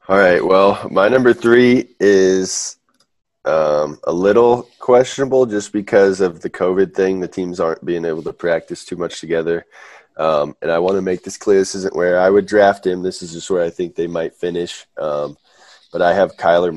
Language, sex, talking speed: English, male, 200 wpm